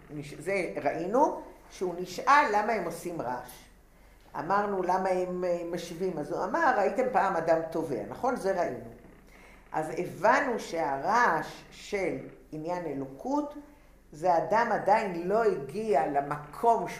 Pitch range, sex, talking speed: 165-230 Hz, female, 110 wpm